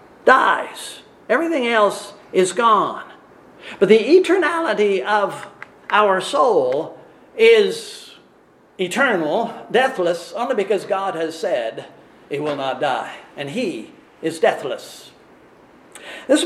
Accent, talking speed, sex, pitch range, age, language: American, 100 wpm, male, 185-270 Hz, 50-69, English